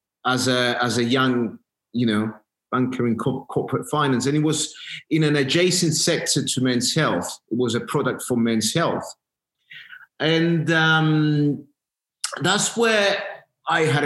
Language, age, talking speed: English, 30-49, 150 wpm